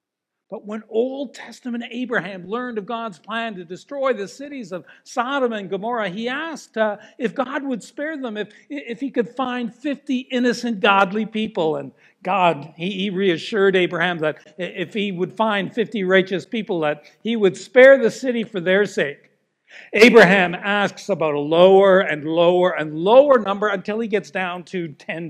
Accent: American